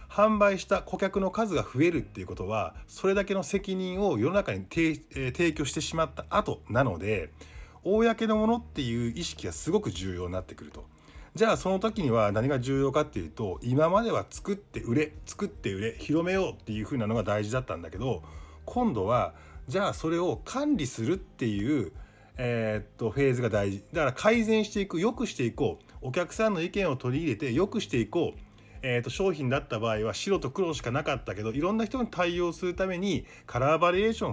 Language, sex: Japanese, male